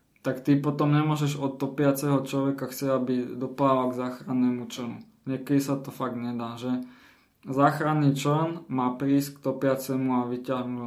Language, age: Slovak, 20-39